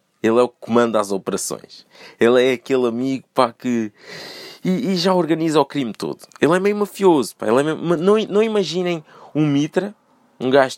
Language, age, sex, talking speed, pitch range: Portuguese, 20-39, male, 195 wpm, 125-190 Hz